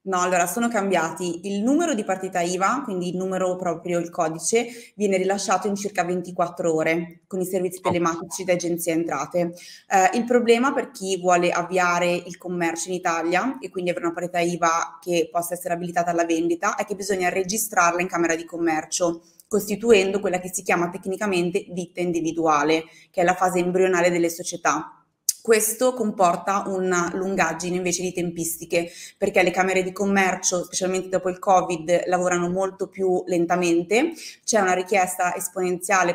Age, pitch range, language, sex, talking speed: 20-39, 175-195 Hz, Italian, female, 160 wpm